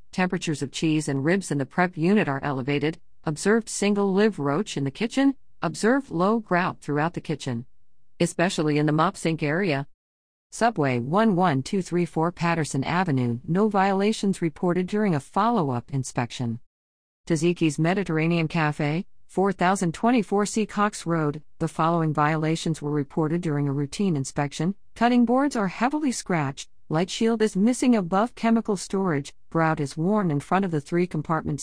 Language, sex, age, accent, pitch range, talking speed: English, female, 50-69, American, 145-200 Hz, 140 wpm